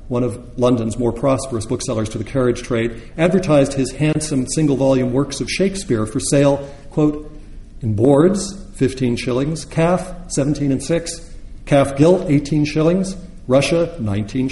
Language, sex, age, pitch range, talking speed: English, male, 50-69, 105-140 Hz, 140 wpm